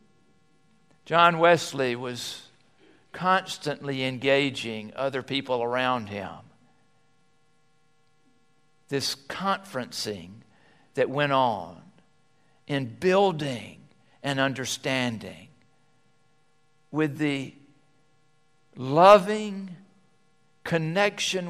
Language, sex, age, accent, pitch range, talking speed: English, male, 60-79, American, 125-160 Hz, 60 wpm